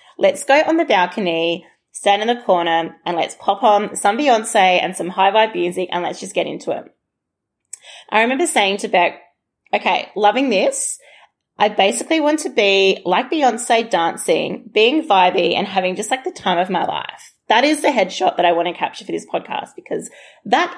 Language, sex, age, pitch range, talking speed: English, female, 30-49, 190-275 Hz, 195 wpm